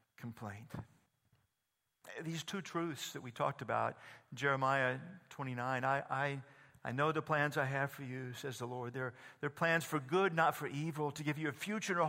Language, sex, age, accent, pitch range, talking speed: English, male, 50-69, American, 140-180 Hz, 190 wpm